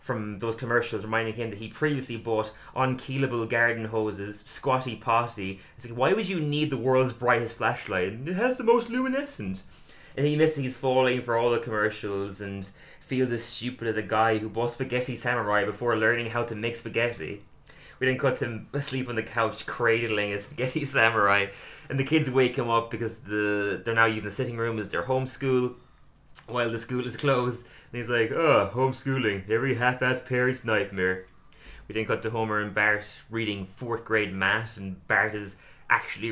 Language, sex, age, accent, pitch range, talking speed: English, male, 20-39, Irish, 110-130 Hz, 190 wpm